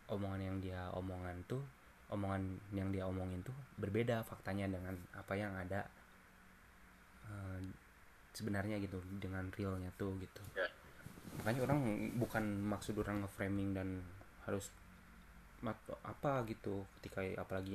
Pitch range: 95-105 Hz